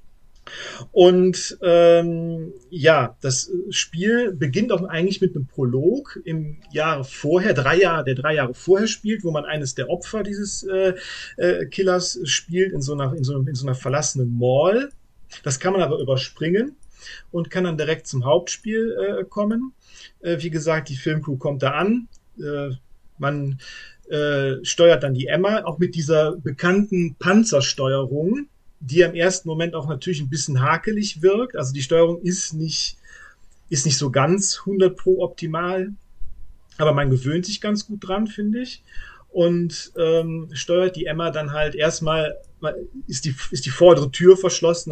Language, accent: German, German